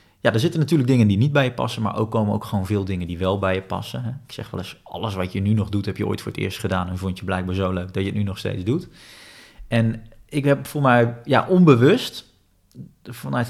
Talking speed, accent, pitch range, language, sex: 265 wpm, Dutch, 100-125 Hz, Dutch, male